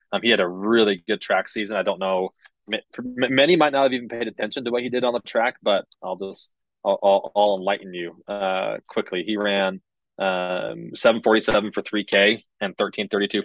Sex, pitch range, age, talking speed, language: male, 95-115 Hz, 20-39, 185 wpm, English